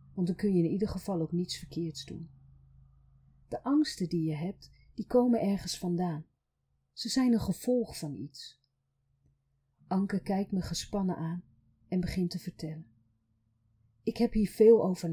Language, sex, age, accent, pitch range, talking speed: Dutch, female, 40-59, Dutch, 160-200 Hz, 160 wpm